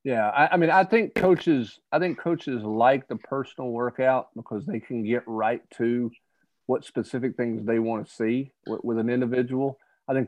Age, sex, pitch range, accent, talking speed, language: 40-59, male, 110-125 Hz, American, 195 wpm, English